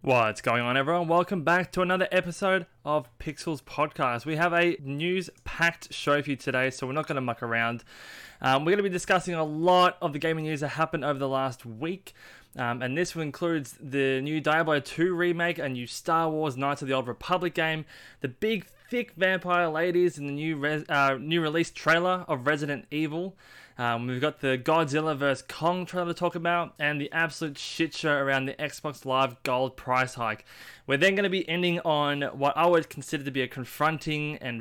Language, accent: English, Australian